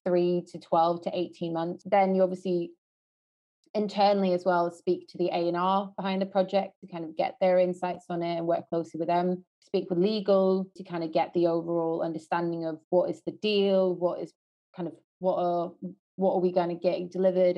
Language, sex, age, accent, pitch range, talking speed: English, female, 20-39, British, 170-185 Hz, 210 wpm